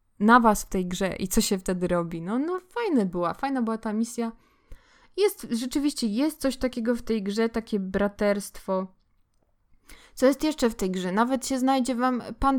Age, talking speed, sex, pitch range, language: 20-39, 185 wpm, female, 200-255 Hz, Polish